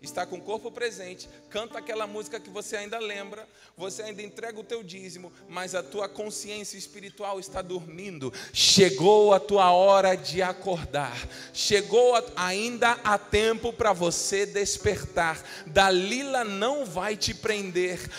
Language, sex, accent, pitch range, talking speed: Portuguese, male, Brazilian, 210-275 Hz, 140 wpm